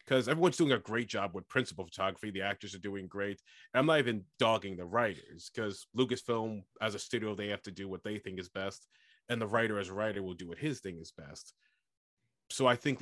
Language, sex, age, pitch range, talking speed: English, male, 30-49, 100-115 Hz, 230 wpm